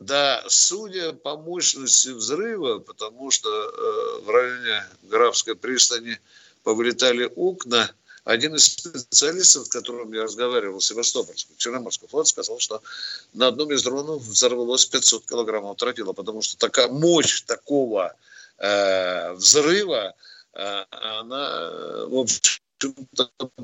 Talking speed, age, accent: 110 wpm, 50-69, native